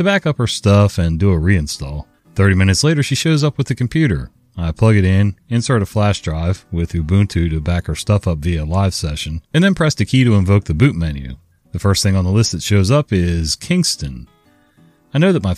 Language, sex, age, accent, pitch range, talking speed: English, male, 40-59, American, 85-120 Hz, 230 wpm